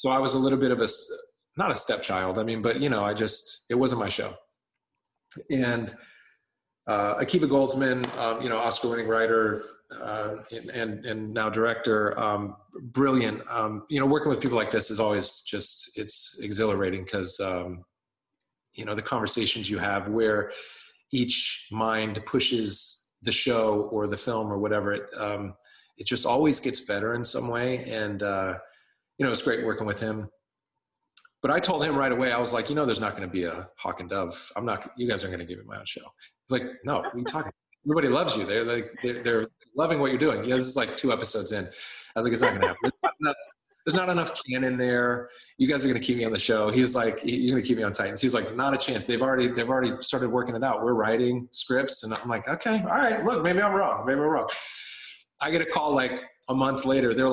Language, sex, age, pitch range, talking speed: English, male, 30-49, 105-130 Hz, 225 wpm